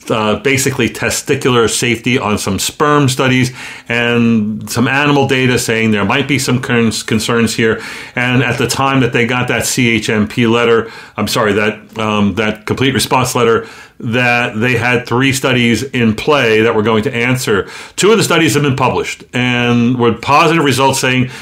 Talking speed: 170 wpm